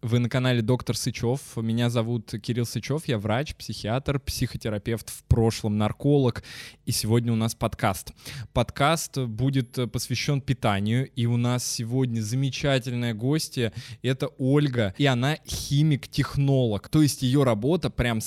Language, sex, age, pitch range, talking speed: Russian, male, 20-39, 115-135 Hz, 135 wpm